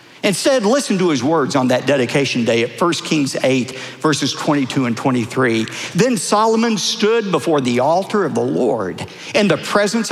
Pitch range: 125-205 Hz